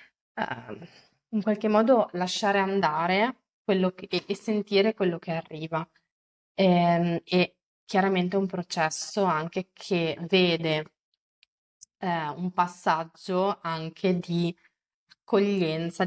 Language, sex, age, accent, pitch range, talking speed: Italian, female, 20-39, native, 165-185 Hz, 90 wpm